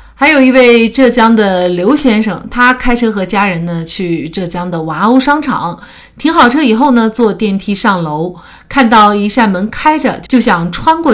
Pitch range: 175-245 Hz